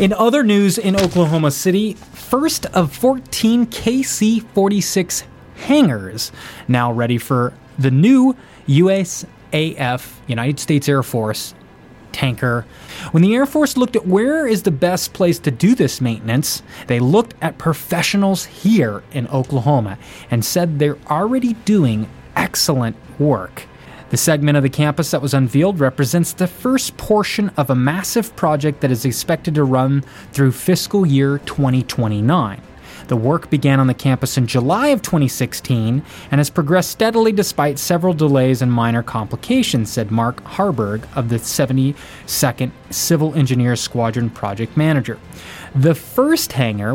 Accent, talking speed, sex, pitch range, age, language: American, 140 wpm, male, 125-185 Hz, 20-39, English